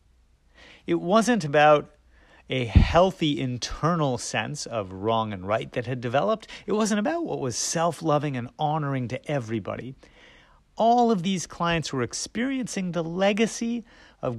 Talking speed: 140 wpm